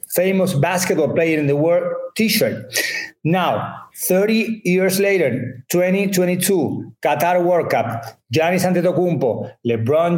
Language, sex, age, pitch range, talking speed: English, male, 40-59, 145-195 Hz, 105 wpm